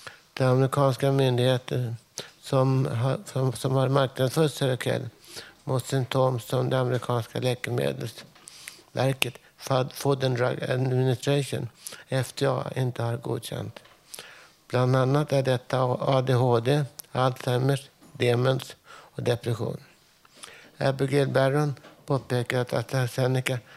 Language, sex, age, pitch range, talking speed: Swedish, male, 60-79, 125-135 Hz, 95 wpm